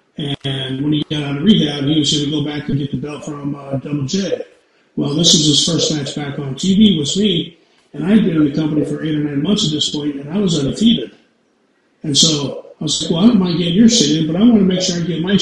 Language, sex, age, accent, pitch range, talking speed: English, male, 40-59, American, 150-195 Hz, 280 wpm